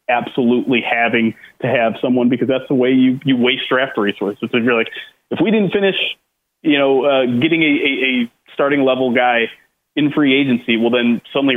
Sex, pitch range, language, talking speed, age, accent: male, 120-150 Hz, English, 190 wpm, 30-49, American